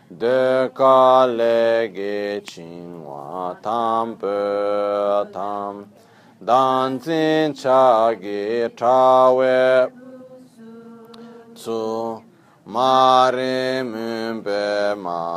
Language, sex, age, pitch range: Italian, male, 40-59, 100-130 Hz